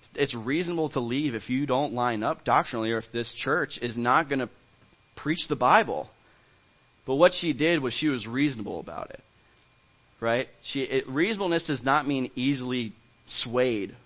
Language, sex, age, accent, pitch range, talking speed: English, male, 30-49, American, 115-140 Hz, 170 wpm